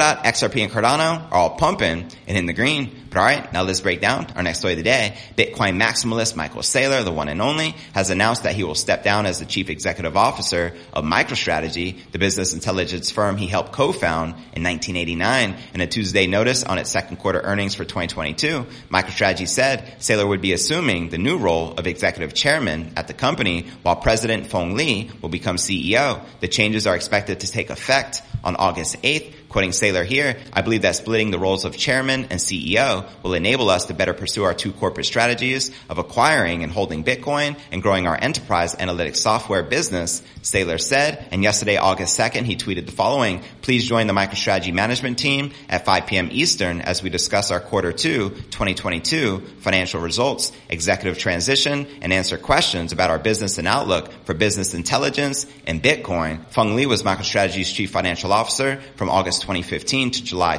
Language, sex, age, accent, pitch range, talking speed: English, male, 30-49, American, 90-120 Hz, 185 wpm